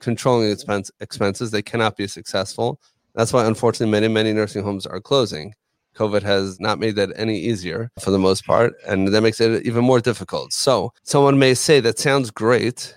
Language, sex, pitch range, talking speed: English, male, 100-120 Hz, 185 wpm